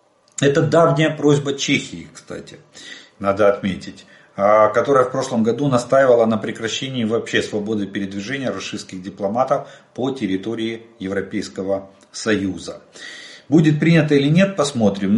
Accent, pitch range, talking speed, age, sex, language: native, 105-145 Hz, 110 wpm, 40-59, male, Russian